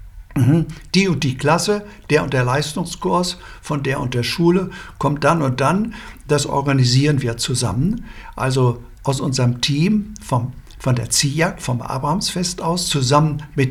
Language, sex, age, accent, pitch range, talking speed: German, male, 60-79, German, 125-170 Hz, 150 wpm